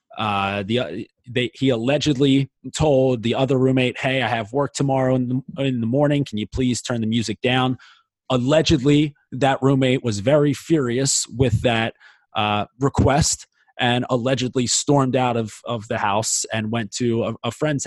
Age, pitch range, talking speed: 20-39, 115-140 Hz, 170 wpm